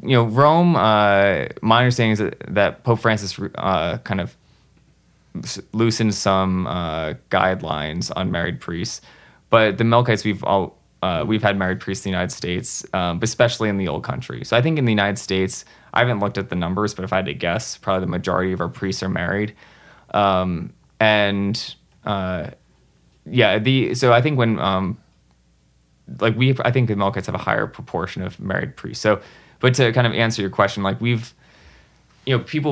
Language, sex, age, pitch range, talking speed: English, male, 20-39, 95-115 Hz, 195 wpm